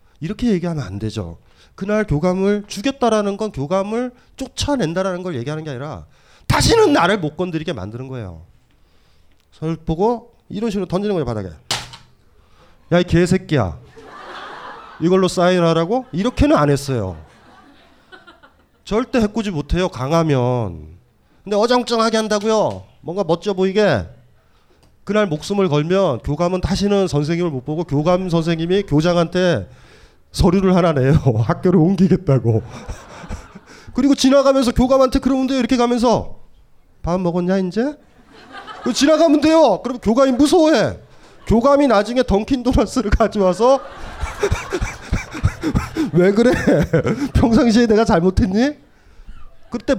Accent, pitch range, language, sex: native, 145-230 Hz, Korean, male